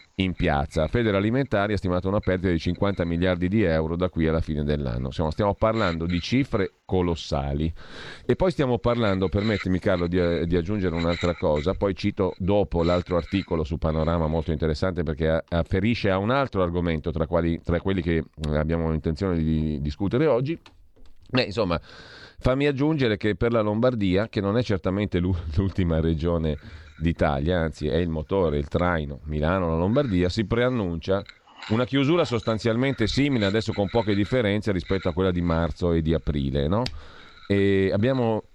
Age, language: 40-59, Italian